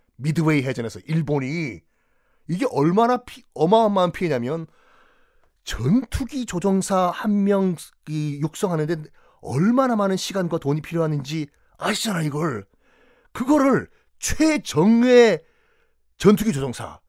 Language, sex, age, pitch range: Korean, male, 40-59, 135-220 Hz